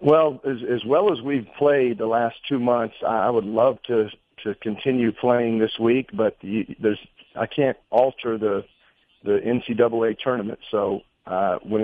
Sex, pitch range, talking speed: male, 110-130 Hz, 165 wpm